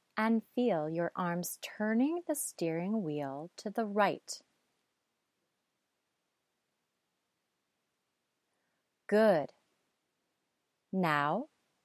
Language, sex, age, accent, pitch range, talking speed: English, female, 30-49, American, 165-230 Hz, 65 wpm